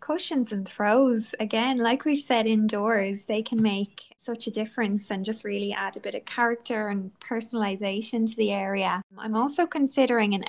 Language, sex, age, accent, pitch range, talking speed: English, female, 20-39, Irish, 195-225 Hz, 175 wpm